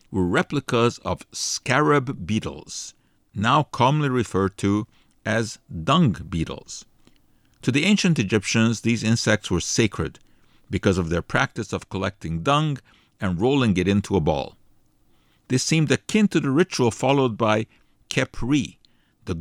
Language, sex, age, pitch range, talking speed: English, male, 50-69, 95-130 Hz, 135 wpm